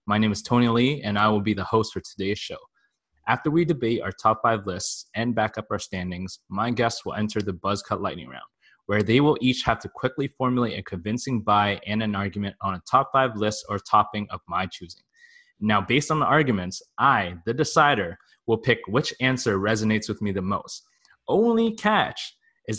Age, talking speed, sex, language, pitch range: 20-39, 210 wpm, male, English, 105-130 Hz